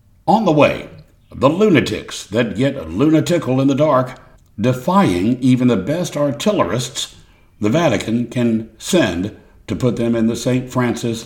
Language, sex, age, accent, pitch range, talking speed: English, male, 60-79, American, 110-130 Hz, 145 wpm